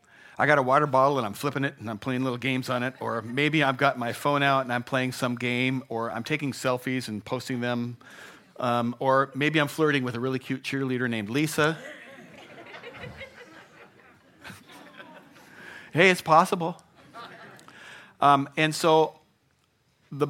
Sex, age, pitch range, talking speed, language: male, 50-69, 115-145 Hz, 160 wpm, English